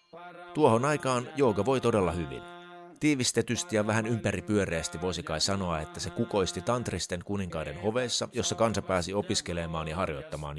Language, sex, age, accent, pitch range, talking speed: Finnish, male, 30-49, native, 90-135 Hz, 135 wpm